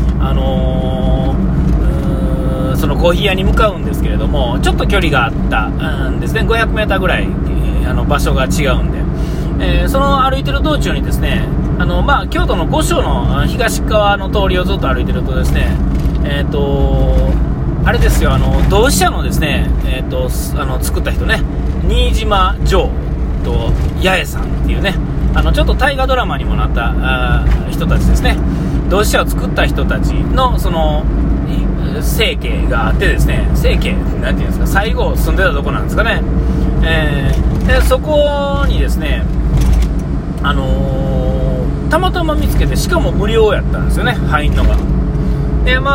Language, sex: Japanese, male